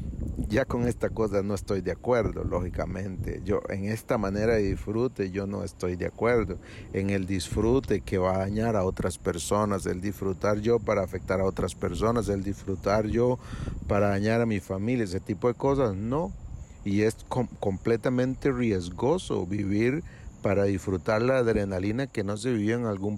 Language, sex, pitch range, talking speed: Spanish, male, 100-115 Hz, 170 wpm